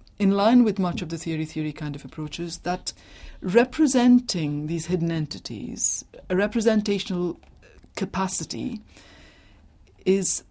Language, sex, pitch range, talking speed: English, female, 150-200 Hz, 110 wpm